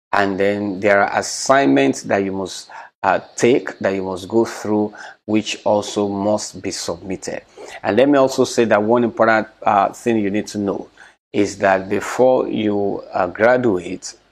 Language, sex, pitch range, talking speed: English, male, 100-115 Hz, 170 wpm